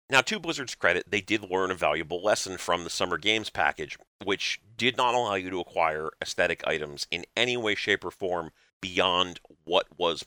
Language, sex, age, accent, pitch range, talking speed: English, male, 40-59, American, 85-105 Hz, 195 wpm